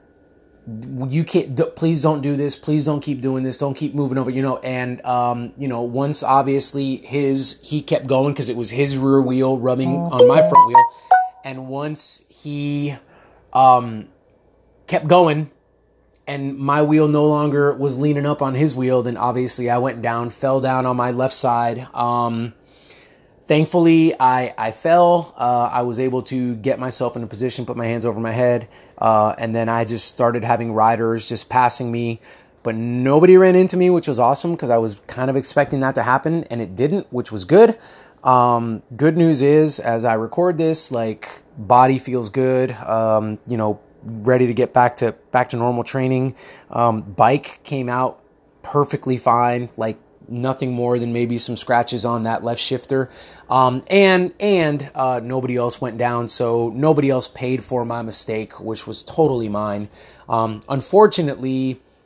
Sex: male